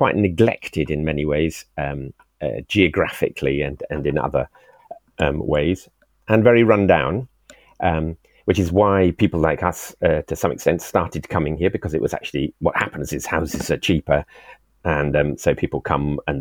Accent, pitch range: British, 75-105 Hz